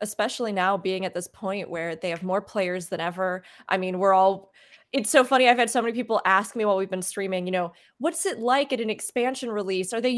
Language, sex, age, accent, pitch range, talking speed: English, female, 20-39, American, 190-250 Hz, 250 wpm